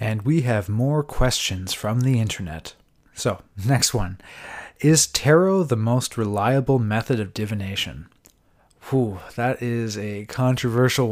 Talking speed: 130 wpm